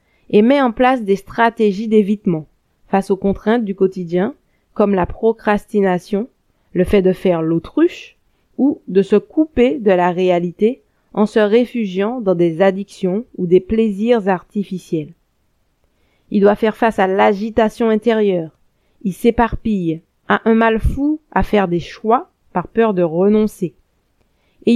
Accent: French